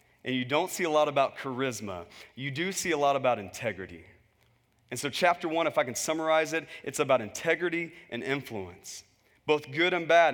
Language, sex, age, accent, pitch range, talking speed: English, male, 30-49, American, 135-175 Hz, 190 wpm